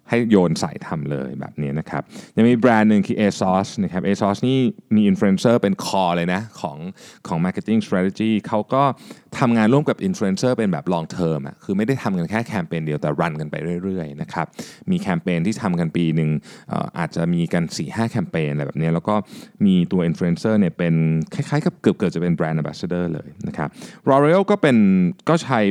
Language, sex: Thai, male